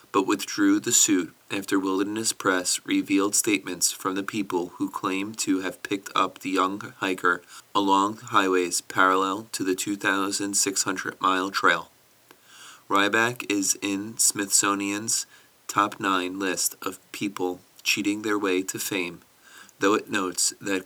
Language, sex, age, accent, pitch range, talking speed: English, male, 30-49, American, 95-105 Hz, 130 wpm